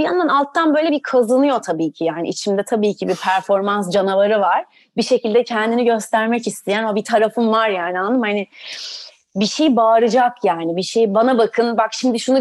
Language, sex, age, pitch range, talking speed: Turkish, female, 30-49, 210-255 Hz, 195 wpm